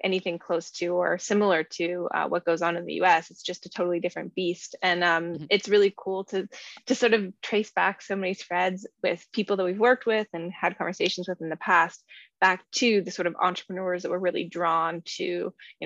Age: 20-39